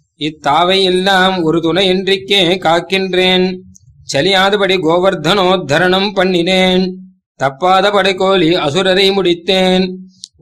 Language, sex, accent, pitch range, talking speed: Tamil, male, native, 170-190 Hz, 70 wpm